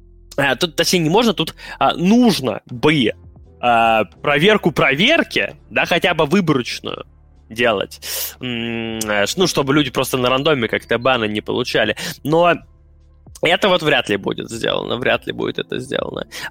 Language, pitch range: Russian, 120-175 Hz